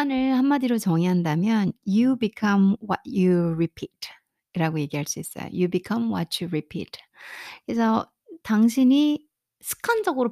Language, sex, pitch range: Korean, female, 155-220 Hz